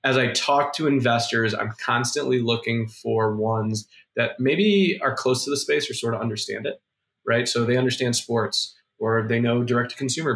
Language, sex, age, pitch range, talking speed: English, male, 20-39, 110-130 Hz, 180 wpm